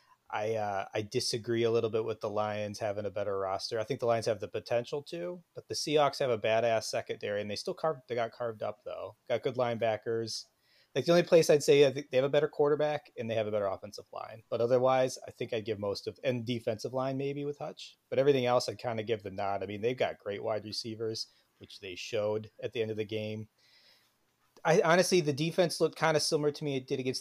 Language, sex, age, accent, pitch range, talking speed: English, male, 30-49, American, 110-145 Hz, 245 wpm